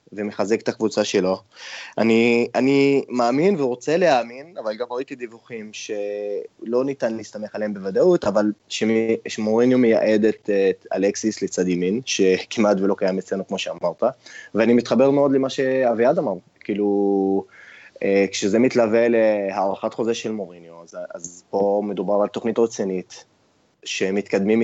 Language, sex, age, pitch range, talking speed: Hebrew, male, 20-39, 100-120 Hz, 125 wpm